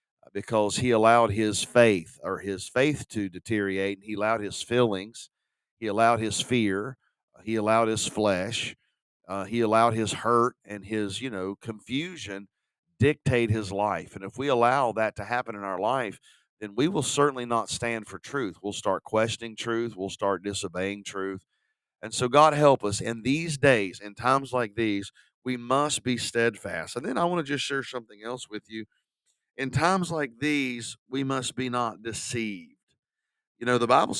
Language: English